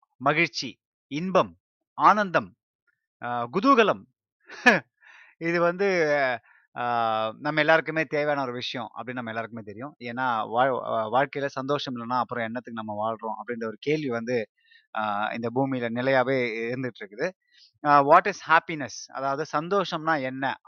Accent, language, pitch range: native, Tamil, 120-160 Hz